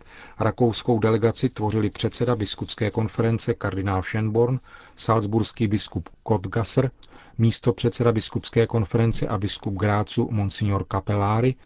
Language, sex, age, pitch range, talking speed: Czech, male, 40-59, 105-130 Hz, 110 wpm